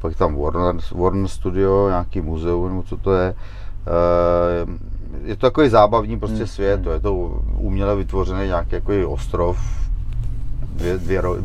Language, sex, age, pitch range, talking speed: Czech, male, 30-49, 85-100 Hz, 120 wpm